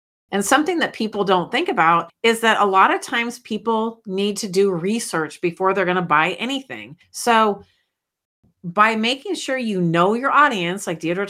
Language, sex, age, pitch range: English, female, 40-59, 175-230 Hz